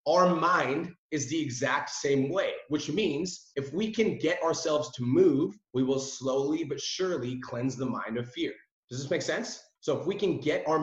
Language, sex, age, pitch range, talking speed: English, male, 30-49, 140-195 Hz, 200 wpm